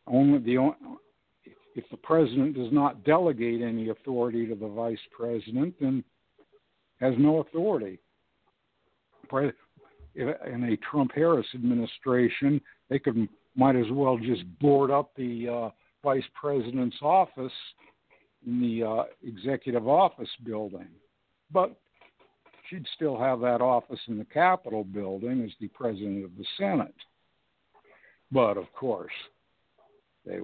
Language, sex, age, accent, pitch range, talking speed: English, male, 60-79, American, 115-130 Hz, 120 wpm